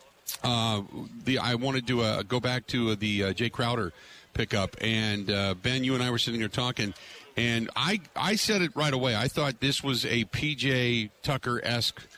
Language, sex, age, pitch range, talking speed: English, male, 40-59, 105-125 Hz, 190 wpm